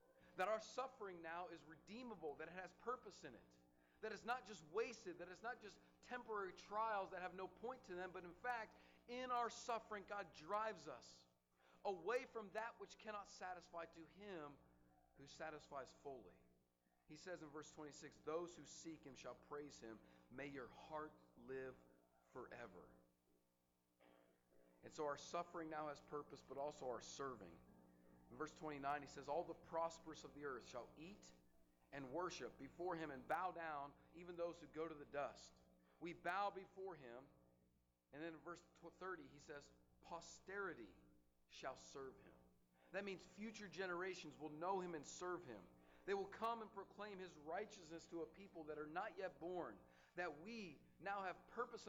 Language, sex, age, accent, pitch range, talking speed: English, male, 40-59, American, 130-195 Hz, 170 wpm